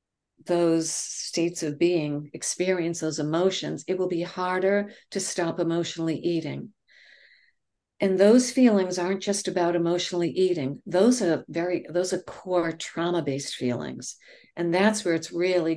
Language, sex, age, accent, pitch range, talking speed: English, female, 60-79, American, 165-200 Hz, 135 wpm